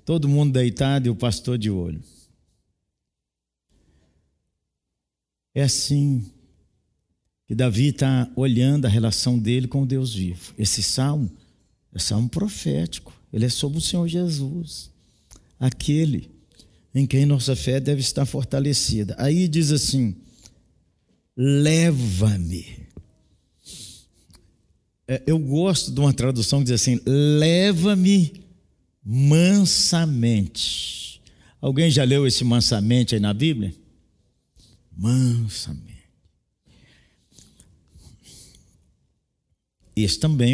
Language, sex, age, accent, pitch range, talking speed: Portuguese, male, 50-69, Brazilian, 105-150 Hz, 95 wpm